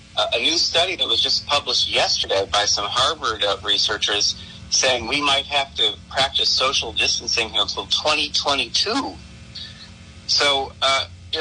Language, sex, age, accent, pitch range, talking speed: English, male, 40-59, American, 90-130 Hz, 125 wpm